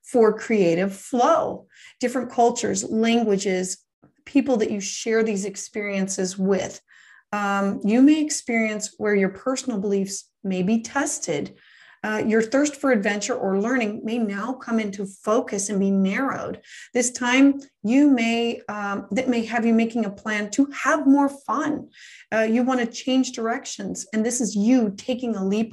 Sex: female